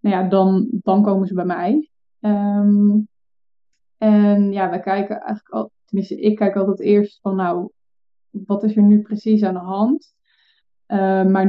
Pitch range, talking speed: 190-210 Hz, 165 wpm